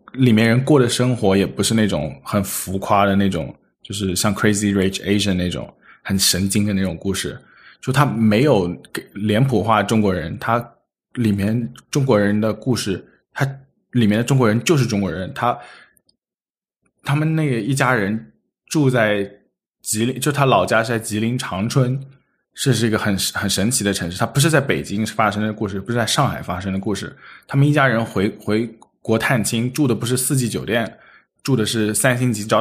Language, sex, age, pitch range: Chinese, male, 20-39, 100-120 Hz